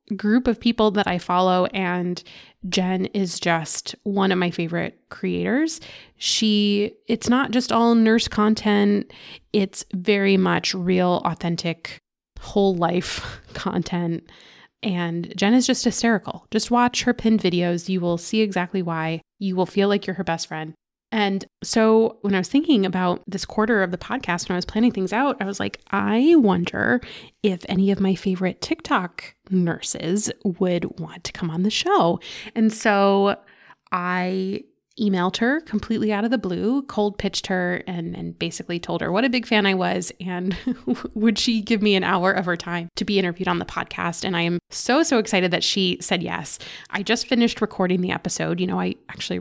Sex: female